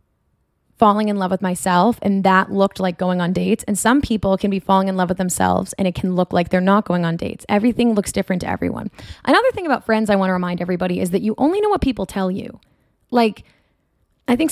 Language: English